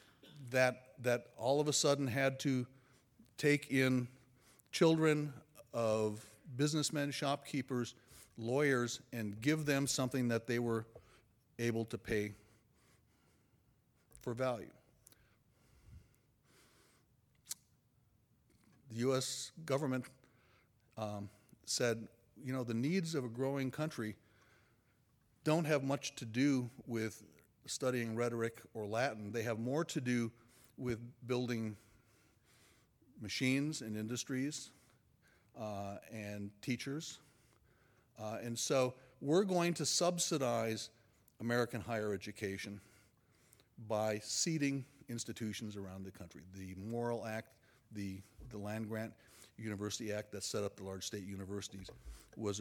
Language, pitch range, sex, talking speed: English, 110-130 Hz, male, 110 wpm